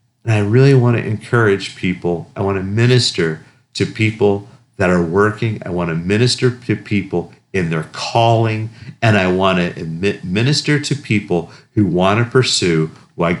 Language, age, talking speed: English, 50-69, 165 wpm